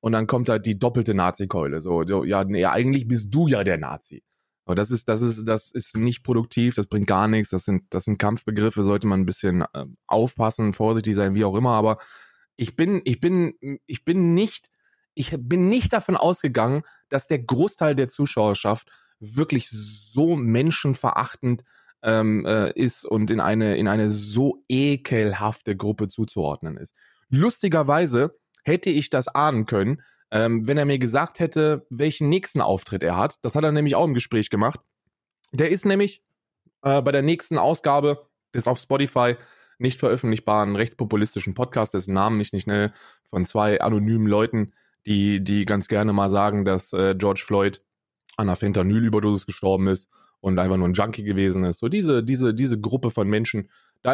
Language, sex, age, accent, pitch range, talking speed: German, male, 20-39, German, 105-135 Hz, 160 wpm